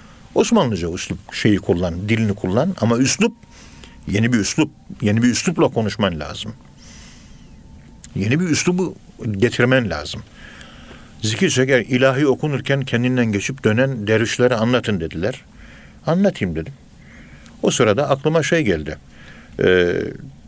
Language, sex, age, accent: Turkish, male, 50-69, native